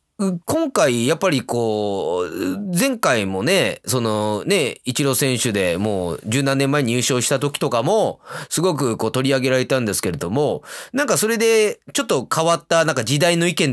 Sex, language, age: male, Japanese, 30-49